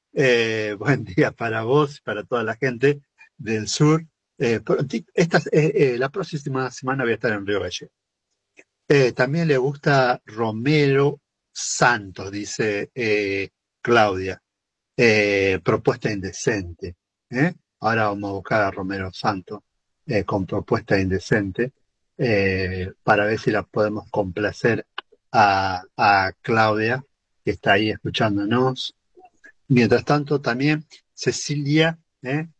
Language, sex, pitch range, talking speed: Spanish, male, 100-135 Hz, 125 wpm